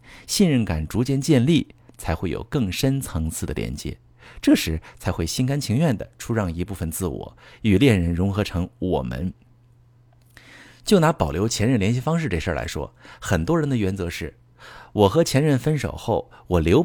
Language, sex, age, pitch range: Chinese, male, 50-69, 90-125 Hz